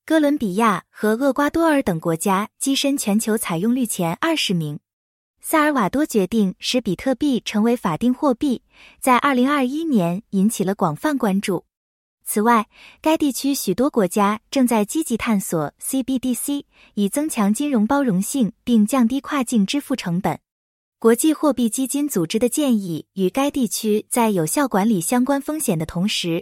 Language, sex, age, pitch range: English, female, 20-39, 195-275 Hz